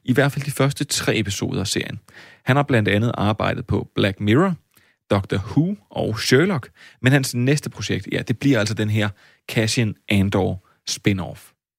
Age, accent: 30-49, native